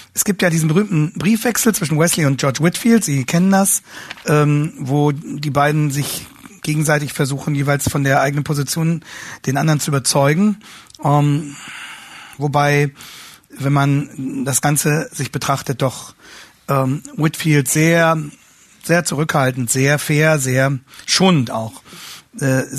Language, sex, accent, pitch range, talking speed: German, male, German, 140-195 Hz, 125 wpm